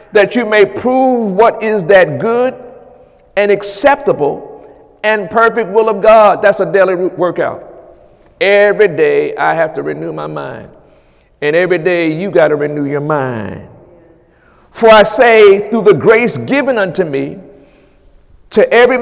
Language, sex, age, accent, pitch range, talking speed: English, male, 50-69, American, 185-230 Hz, 150 wpm